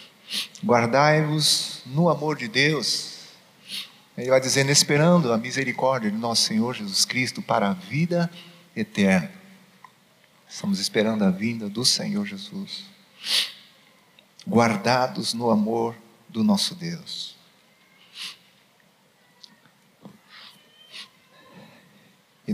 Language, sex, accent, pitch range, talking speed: Portuguese, male, Brazilian, 130-190 Hz, 90 wpm